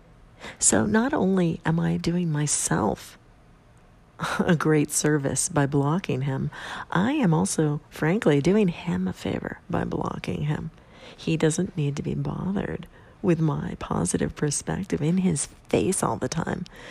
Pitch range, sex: 145-175 Hz, female